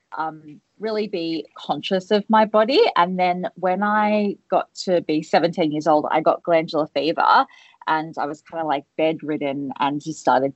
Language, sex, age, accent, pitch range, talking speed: English, female, 20-39, Australian, 150-185 Hz, 175 wpm